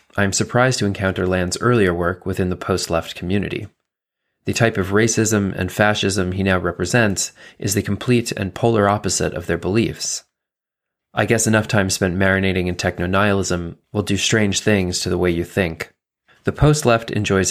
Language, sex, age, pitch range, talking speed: English, male, 20-39, 90-105 Hz, 170 wpm